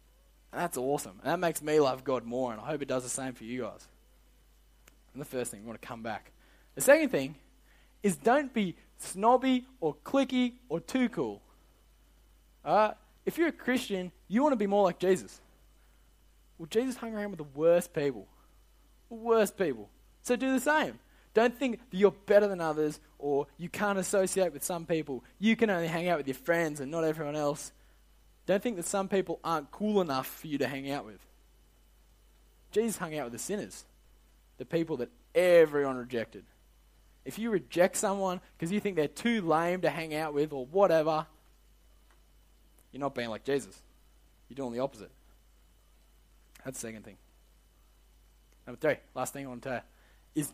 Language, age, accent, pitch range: English, 20-39, Australian, 125-200 Hz